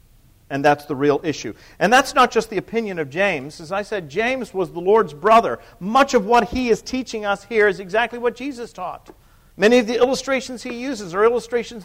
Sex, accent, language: male, American, English